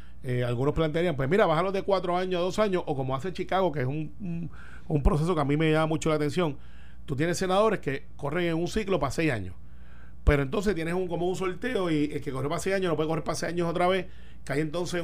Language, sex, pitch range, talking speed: Spanish, male, 140-185 Hz, 265 wpm